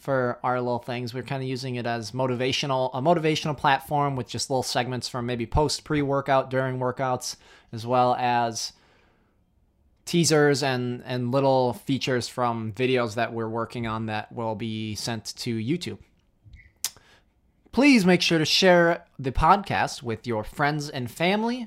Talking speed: 155 wpm